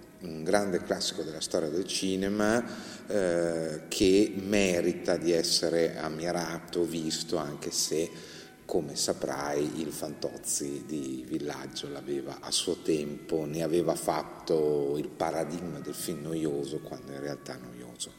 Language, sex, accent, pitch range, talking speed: Italian, male, native, 75-100 Hz, 125 wpm